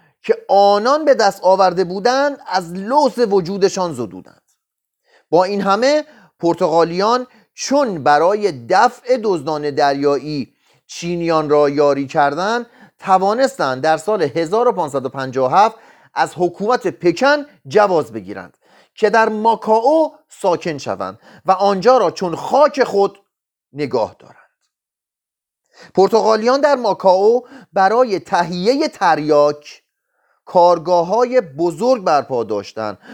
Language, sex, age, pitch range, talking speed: Persian, male, 30-49, 160-240 Hz, 100 wpm